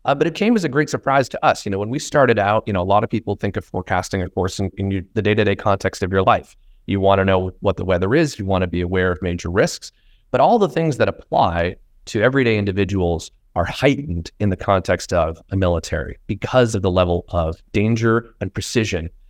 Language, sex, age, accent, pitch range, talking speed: English, male, 30-49, American, 95-120 Hz, 240 wpm